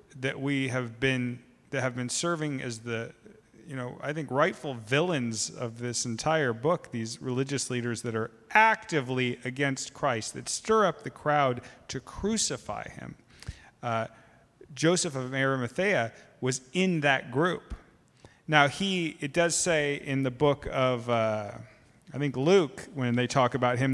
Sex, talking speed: male, 155 wpm